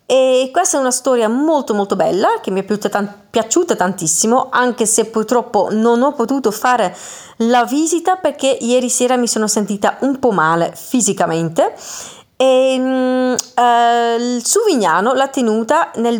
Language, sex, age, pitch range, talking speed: Italian, female, 30-49, 200-260 Hz, 140 wpm